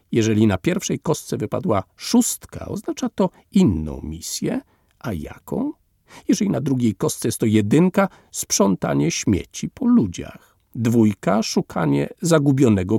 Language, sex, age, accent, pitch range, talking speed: Polish, male, 50-69, native, 95-165 Hz, 120 wpm